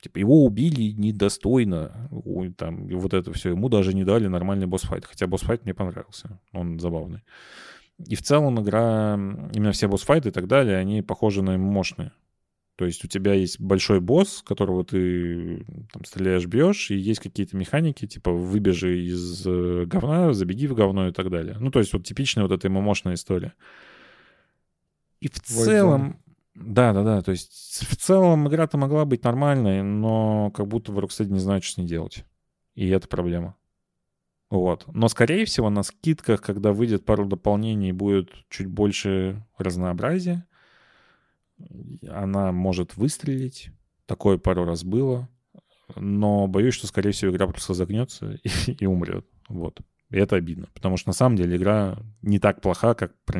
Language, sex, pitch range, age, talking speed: Russian, male, 90-115 Hz, 30-49, 160 wpm